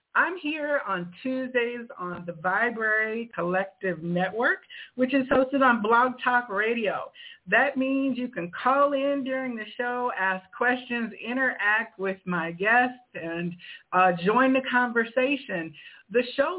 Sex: female